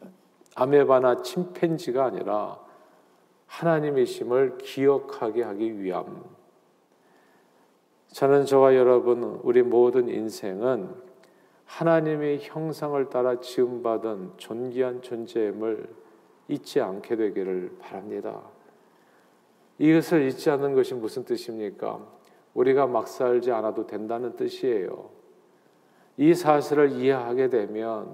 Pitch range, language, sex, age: 120-170 Hz, Korean, male, 40-59